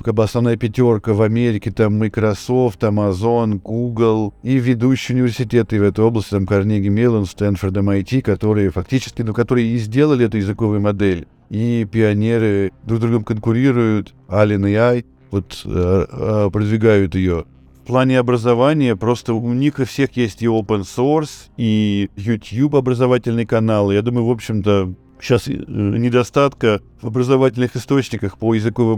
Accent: native